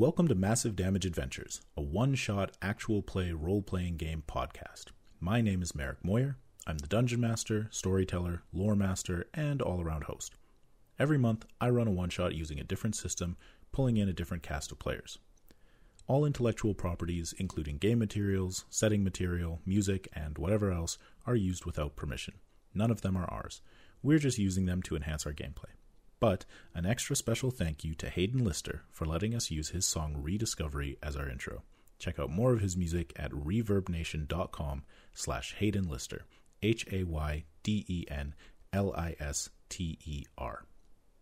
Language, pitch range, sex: English, 80-110 Hz, male